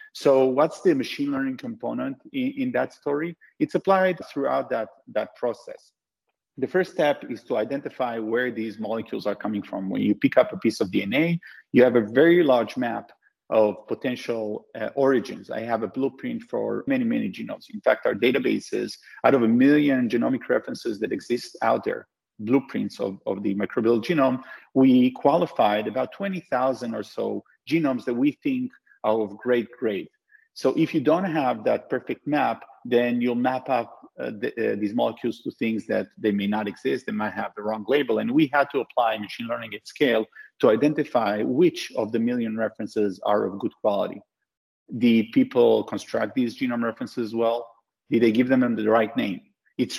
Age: 40-59